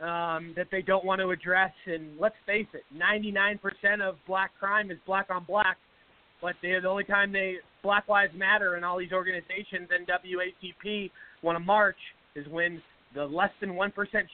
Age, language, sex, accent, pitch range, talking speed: 30-49, English, male, American, 175-210 Hz, 175 wpm